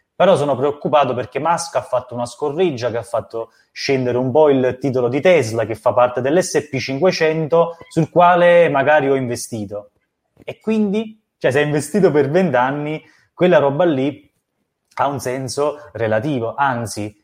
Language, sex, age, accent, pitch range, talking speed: Italian, male, 20-39, native, 115-150 Hz, 155 wpm